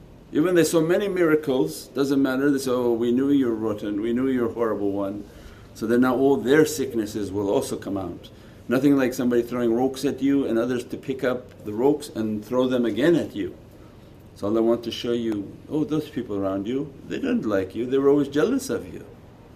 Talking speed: 220 wpm